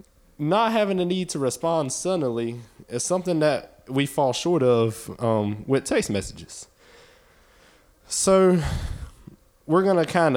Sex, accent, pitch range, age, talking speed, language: male, American, 115-155 Hz, 20-39, 135 wpm, English